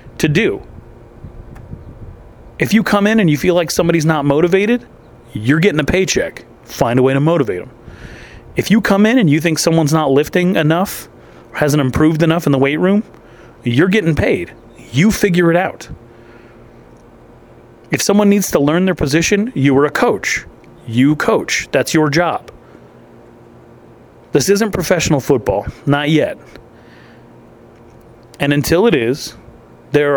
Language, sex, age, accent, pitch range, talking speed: English, male, 30-49, American, 120-170 Hz, 150 wpm